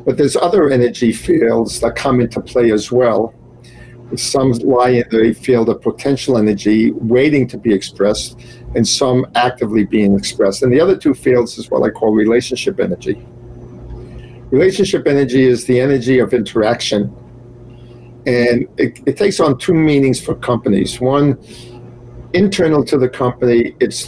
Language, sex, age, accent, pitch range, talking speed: English, male, 50-69, American, 120-140 Hz, 150 wpm